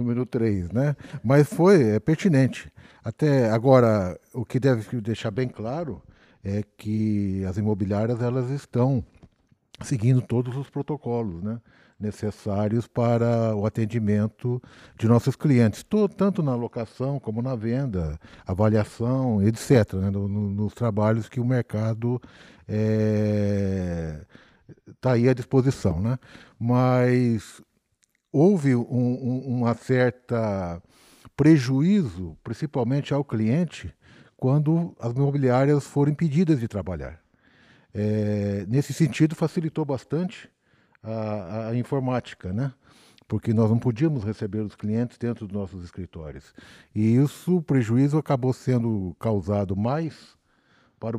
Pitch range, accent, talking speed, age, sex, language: 105-130 Hz, Brazilian, 115 wpm, 60-79, male, Portuguese